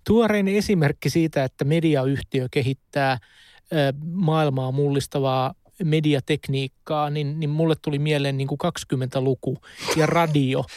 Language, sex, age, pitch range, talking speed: Finnish, male, 30-49, 140-165 Hz, 105 wpm